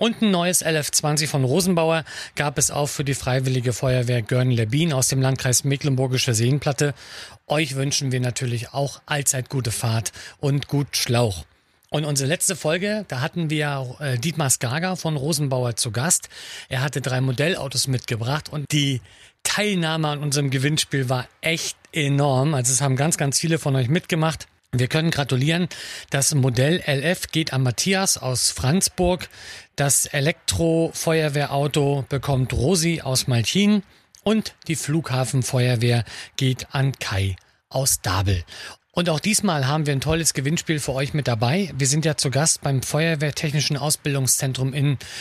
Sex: male